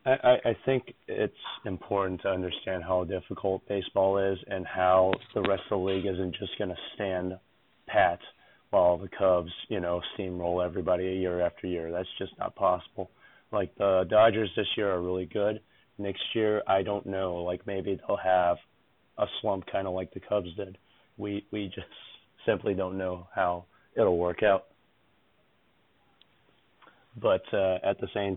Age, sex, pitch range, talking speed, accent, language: 30-49, male, 90-100 Hz, 165 wpm, American, English